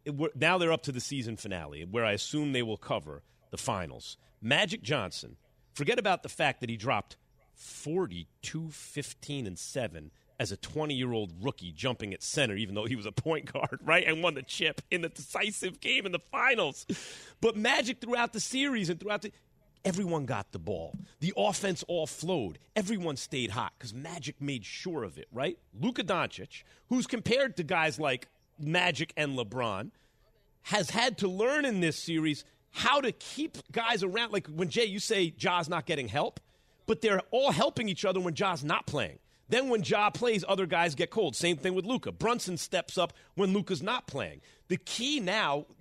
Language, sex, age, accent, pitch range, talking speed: English, male, 40-59, American, 135-200 Hz, 185 wpm